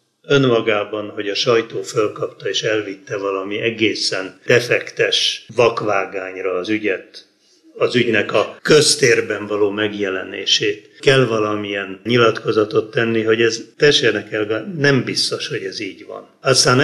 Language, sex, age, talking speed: Hungarian, male, 60-79, 120 wpm